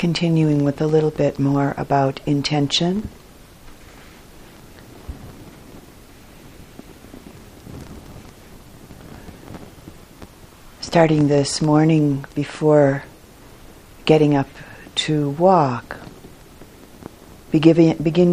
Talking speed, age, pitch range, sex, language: 55 wpm, 50-69, 140-155 Hz, female, English